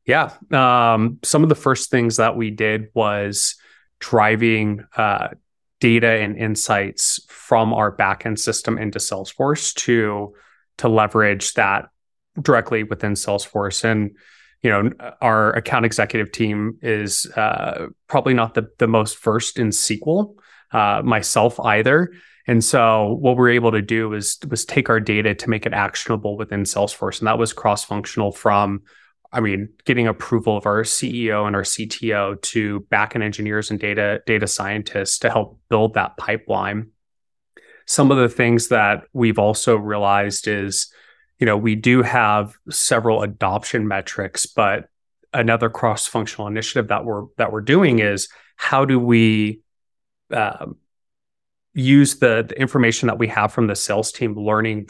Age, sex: 20-39, male